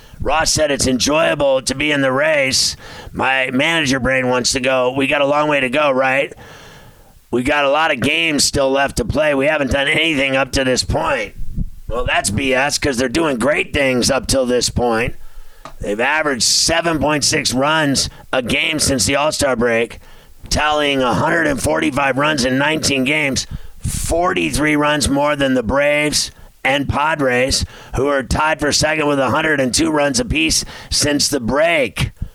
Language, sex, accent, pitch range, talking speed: English, male, American, 130-150 Hz, 165 wpm